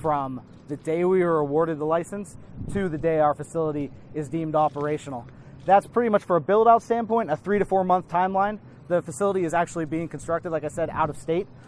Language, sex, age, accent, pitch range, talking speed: English, male, 30-49, American, 145-175 Hz, 215 wpm